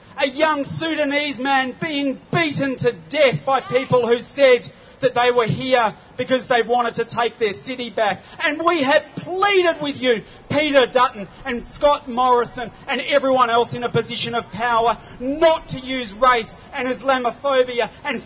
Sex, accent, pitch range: male, Australian, 230-285 Hz